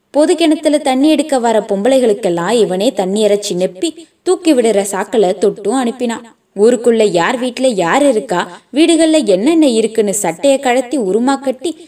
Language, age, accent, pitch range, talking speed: Tamil, 20-39, native, 195-265 Hz, 130 wpm